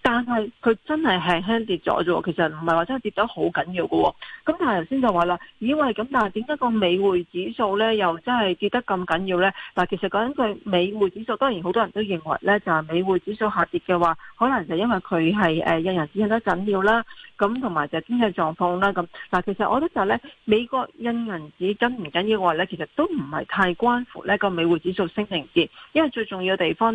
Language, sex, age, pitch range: Chinese, female, 40-59, 175-225 Hz